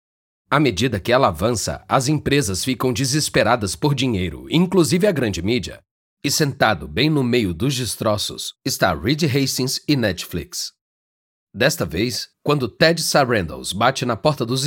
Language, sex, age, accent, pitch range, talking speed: Portuguese, male, 40-59, Brazilian, 100-145 Hz, 145 wpm